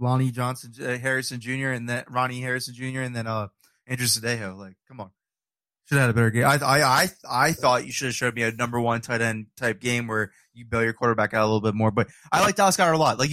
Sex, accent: male, American